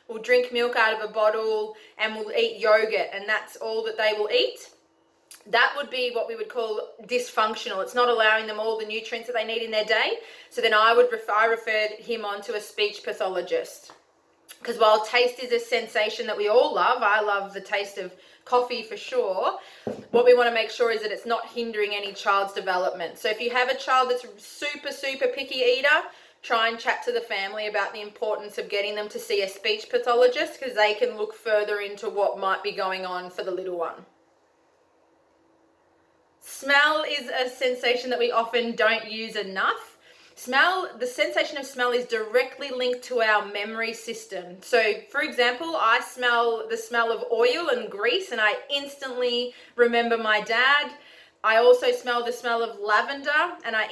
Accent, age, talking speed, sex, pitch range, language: Australian, 20-39, 195 wpm, female, 215-255 Hz, English